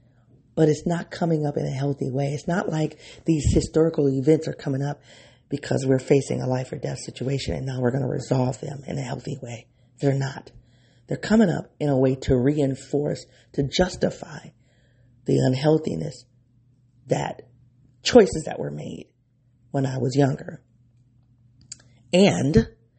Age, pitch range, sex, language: 40-59, 125-165 Hz, female, English